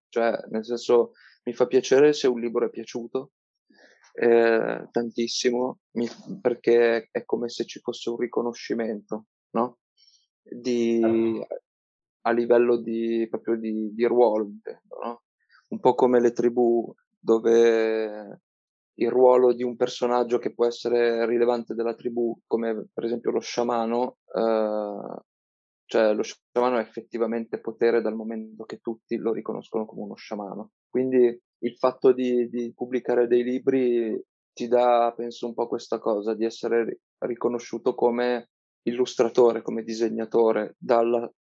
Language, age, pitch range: Italian, 20-39, 115-125 Hz